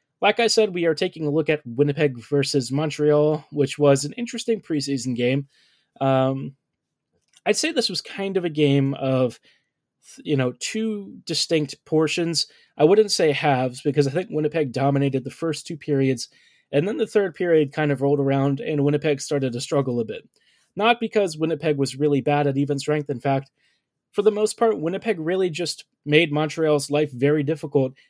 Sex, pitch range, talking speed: male, 135-160 Hz, 180 wpm